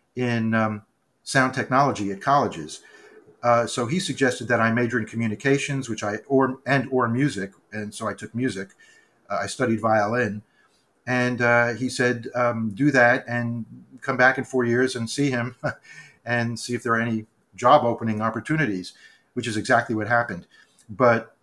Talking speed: 170 wpm